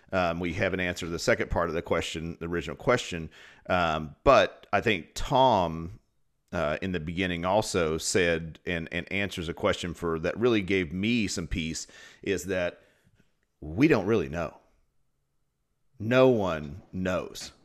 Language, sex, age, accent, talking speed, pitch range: English, male, 40-59, American, 155 wpm, 85-105 Hz